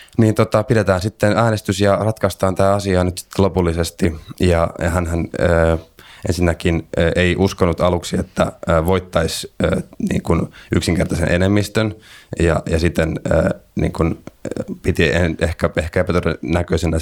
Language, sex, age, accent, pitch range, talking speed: Finnish, male, 30-49, native, 85-95 Hz, 115 wpm